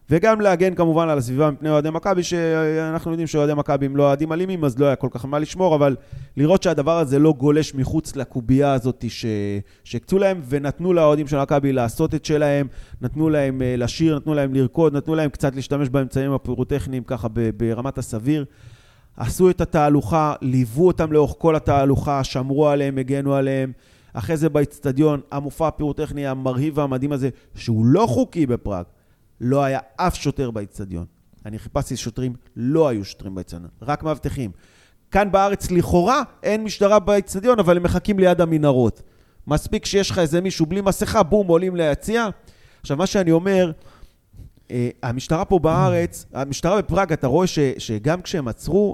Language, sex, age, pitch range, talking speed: Hebrew, male, 30-49, 125-165 Hz, 150 wpm